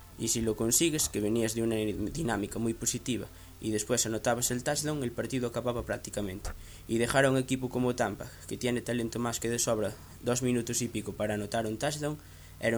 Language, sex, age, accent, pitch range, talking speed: Spanish, male, 20-39, Spanish, 105-125 Hz, 200 wpm